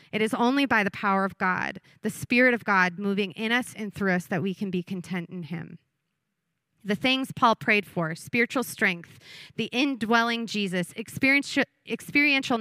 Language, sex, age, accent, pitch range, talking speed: English, female, 30-49, American, 175-225 Hz, 170 wpm